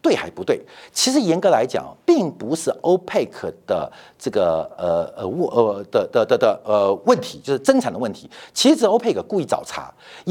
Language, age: Chinese, 50-69